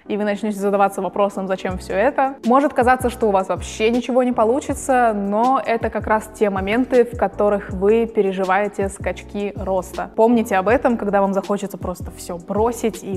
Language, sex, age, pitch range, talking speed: Russian, female, 20-39, 200-235 Hz, 180 wpm